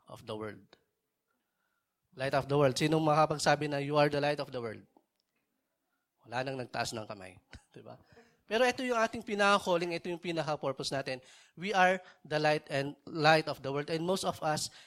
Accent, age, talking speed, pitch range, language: Filipino, 20-39, 115 wpm, 130-165 Hz, English